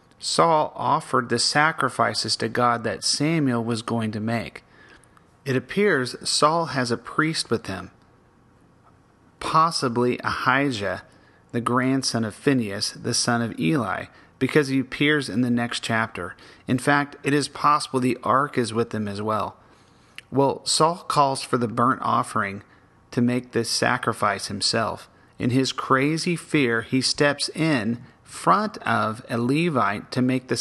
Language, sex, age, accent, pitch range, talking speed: English, male, 30-49, American, 115-140 Hz, 145 wpm